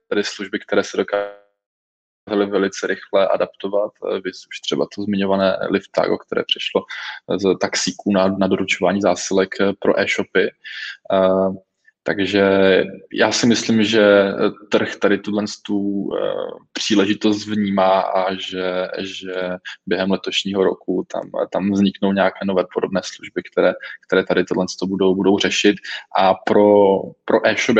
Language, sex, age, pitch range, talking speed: Czech, male, 20-39, 95-105 Hz, 125 wpm